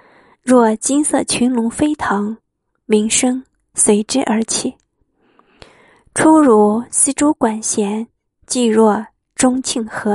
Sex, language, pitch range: female, Chinese, 220-285 Hz